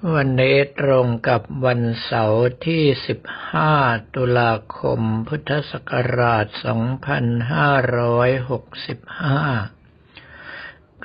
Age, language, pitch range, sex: 60-79, Thai, 115-135 Hz, male